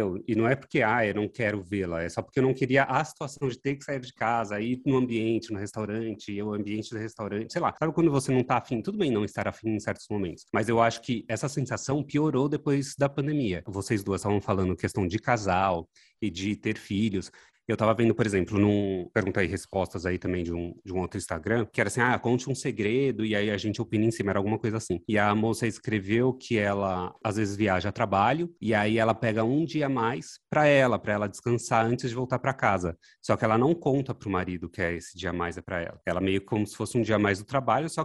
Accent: Brazilian